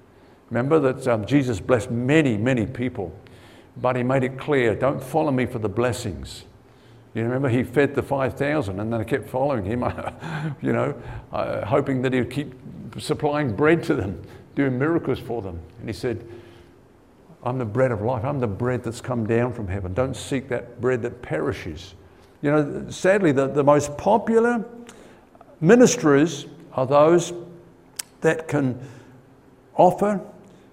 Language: English